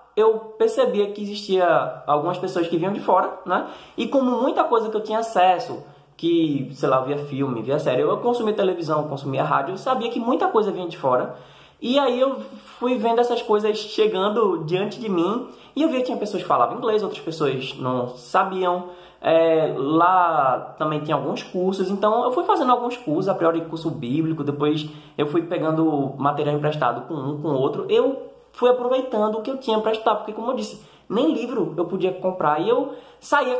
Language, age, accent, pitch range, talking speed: Portuguese, 20-39, Brazilian, 165-240 Hz, 195 wpm